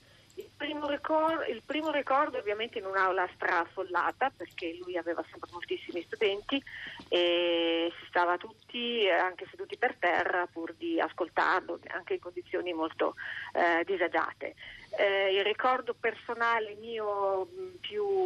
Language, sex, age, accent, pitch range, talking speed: Italian, female, 40-59, native, 175-285 Hz, 130 wpm